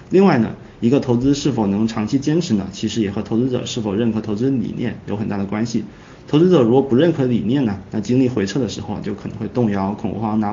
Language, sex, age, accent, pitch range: Chinese, male, 20-39, native, 105-130 Hz